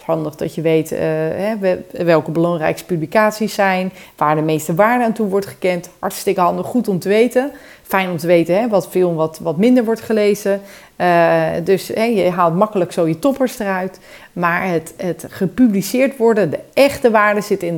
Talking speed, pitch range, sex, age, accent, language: 190 wpm, 165-210 Hz, female, 40-59, Dutch, Dutch